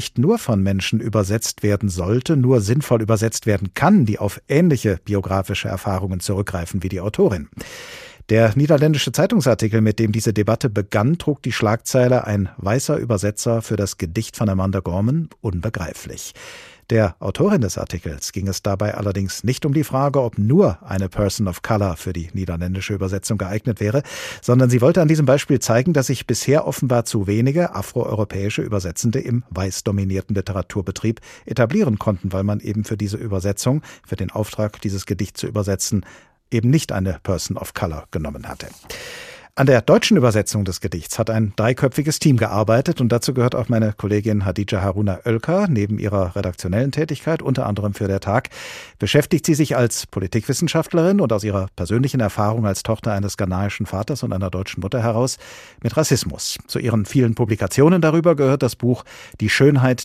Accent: German